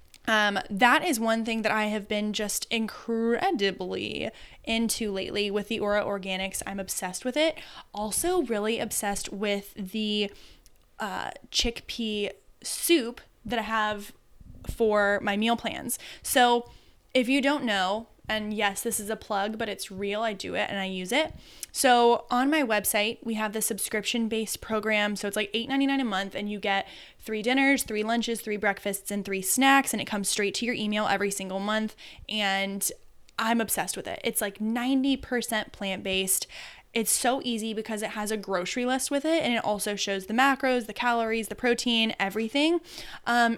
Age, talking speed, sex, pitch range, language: 10-29, 175 wpm, female, 205-240 Hz, English